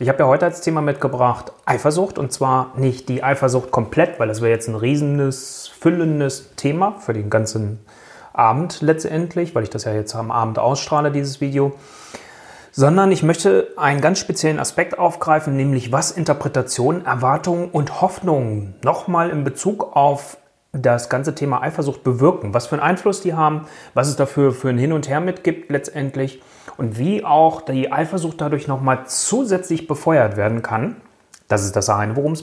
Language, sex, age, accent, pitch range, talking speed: German, male, 30-49, German, 115-155 Hz, 170 wpm